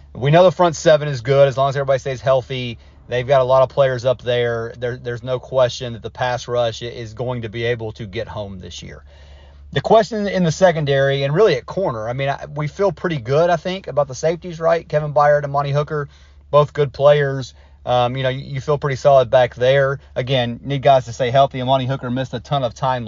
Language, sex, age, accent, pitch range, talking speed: English, male, 30-49, American, 115-145 Hz, 235 wpm